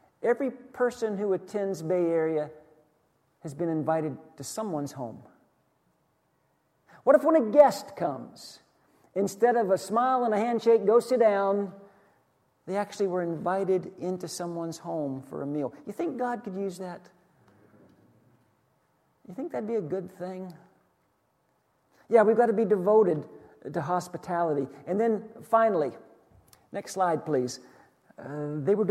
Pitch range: 155-215 Hz